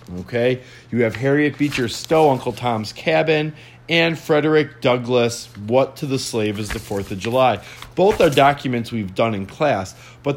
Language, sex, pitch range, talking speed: English, male, 105-140 Hz, 170 wpm